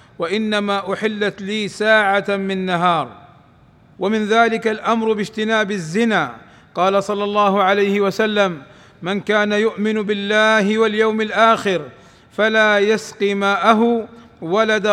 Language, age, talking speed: Arabic, 50-69, 105 wpm